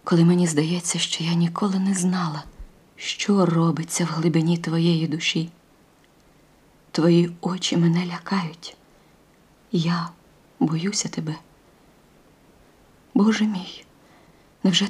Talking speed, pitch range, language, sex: 95 wpm, 165-190 Hz, Ukrainian, female